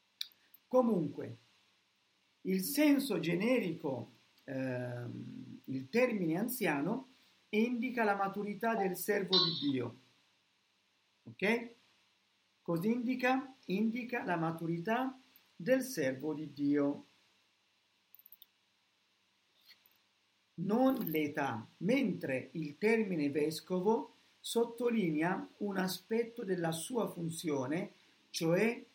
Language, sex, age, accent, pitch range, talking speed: Italian, male, 50-69, native, 165-235 Hz, 80 wpm